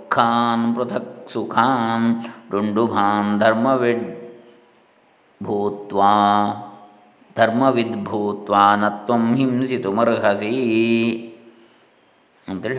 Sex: male